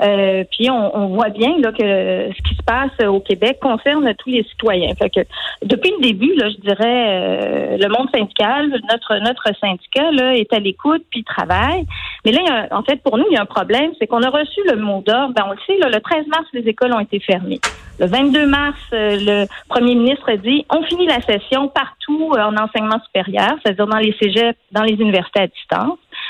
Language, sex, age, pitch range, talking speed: French, female, 40-59, 220-305 Hz, 215 wpm